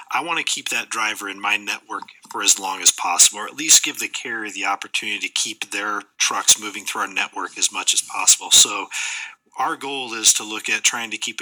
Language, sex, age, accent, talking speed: English, male, 40-59, American, 230 wpm